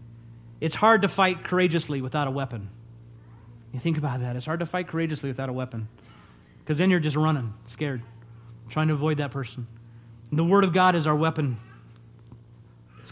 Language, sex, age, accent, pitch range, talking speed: English, male, 30-49, American, 115-175 Hz, 180 wpm